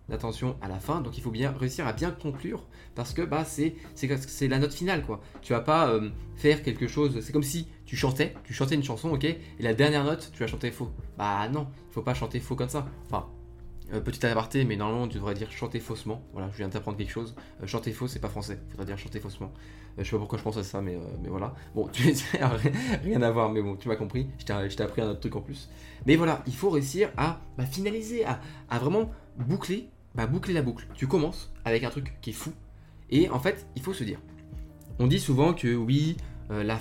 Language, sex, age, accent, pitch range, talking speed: French, male, 20-39, French, 110-145 Hz, 255 wpm